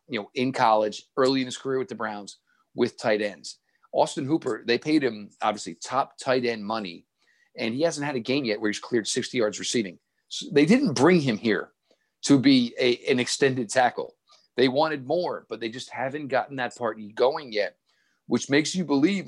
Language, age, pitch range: English, 40-59, 115-145 Hz